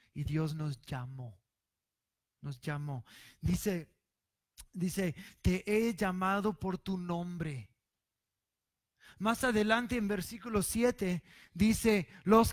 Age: 30-49